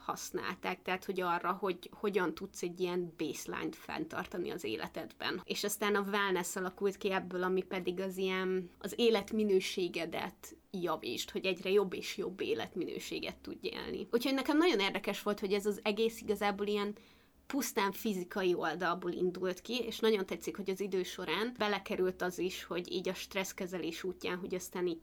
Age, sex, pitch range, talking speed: 20-39, female, 185-225 Hz, 165 wpm